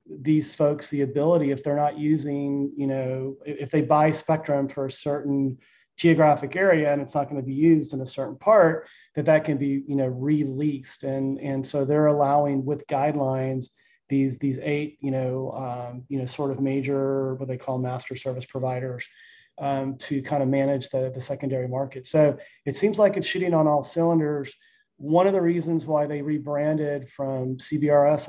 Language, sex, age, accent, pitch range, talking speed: English, male, 30-49, American, 135-150 Hz, 185 wpm